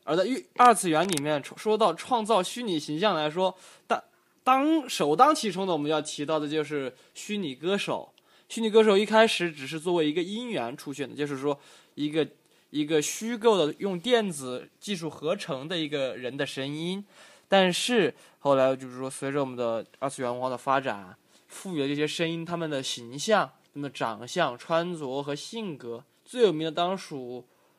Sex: male